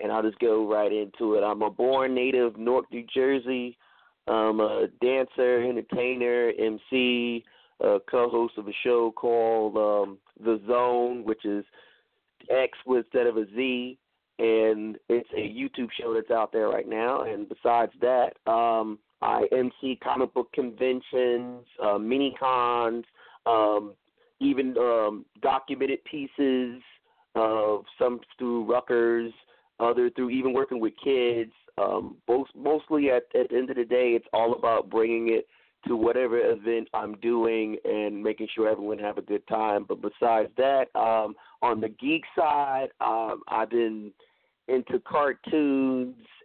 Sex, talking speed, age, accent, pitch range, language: male, 145 wpm, 30-49, American, 110-130 Hz, English